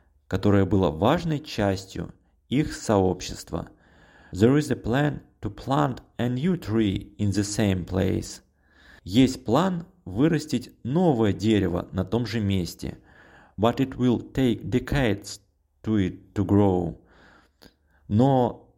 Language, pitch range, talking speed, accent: Russian, 95-130 Hz, 120 wpm, native